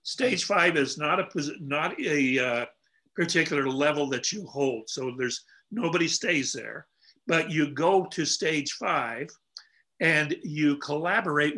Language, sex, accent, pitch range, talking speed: English, male, American, 140-175 Hz, 140 wpm